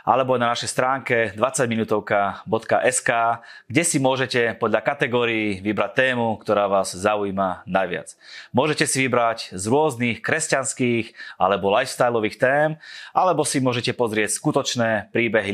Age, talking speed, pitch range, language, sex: 20-39, 120 wpm, 105-130 Hz, Slovak, male